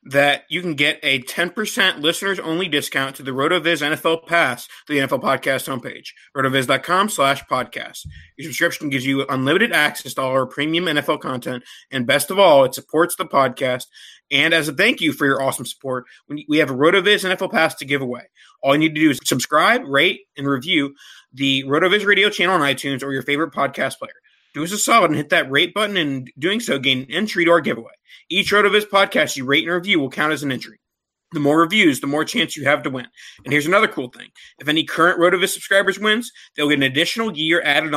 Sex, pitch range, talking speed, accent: male, 140-185 Hz, 220 wpm, American